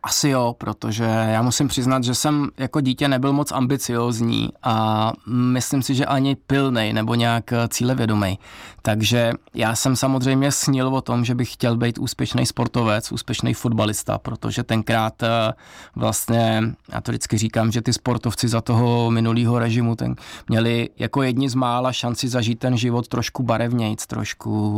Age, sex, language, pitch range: 20-39, male, Czech, 110-125 Hz